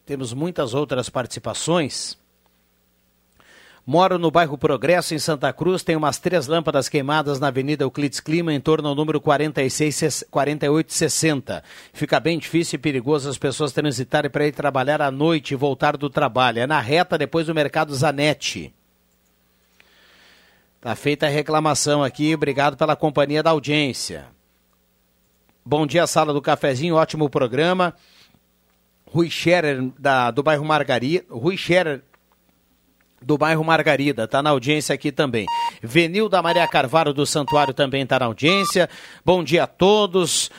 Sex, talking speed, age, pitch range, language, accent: male, 135 wpm, 60-79, 140-165 Hz, Portuguese, Brazilian